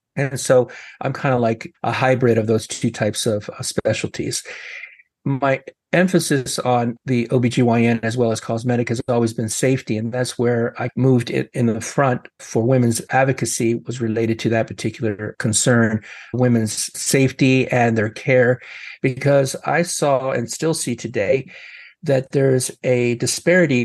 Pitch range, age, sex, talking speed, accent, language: 115-130 Hz, 50-69, male, 155 wpm, American, English